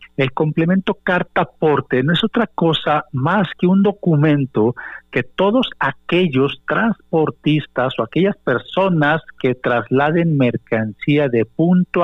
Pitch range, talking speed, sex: 115-165 Hz, 120 wpm, male